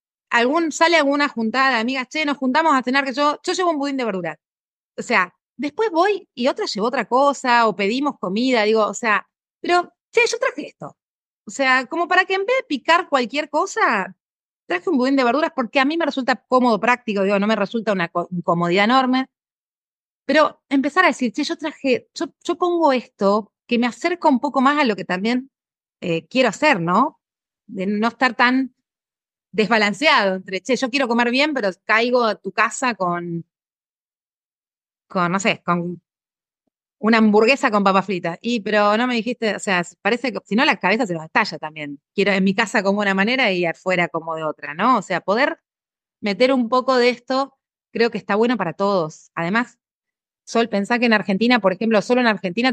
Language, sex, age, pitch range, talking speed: Spanish, female, 30-49, 195-270 Hz, 200 wpm